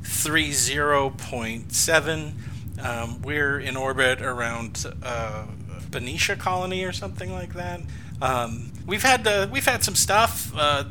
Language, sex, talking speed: English, male, 140 wpm